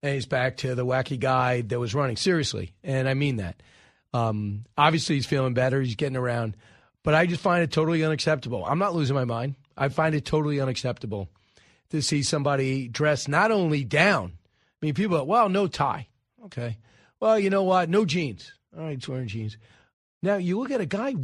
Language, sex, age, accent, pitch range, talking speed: English, male, 40-59, American, 130-195 Hz, 205 wpm